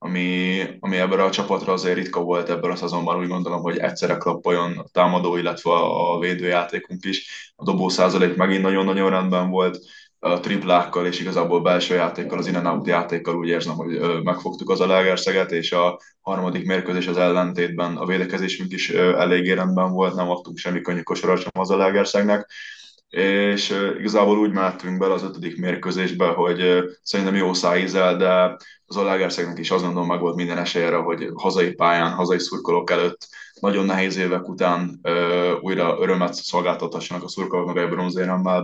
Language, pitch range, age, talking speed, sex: Hungarian, 85-95 Hz, 20-39, 160 wpm, male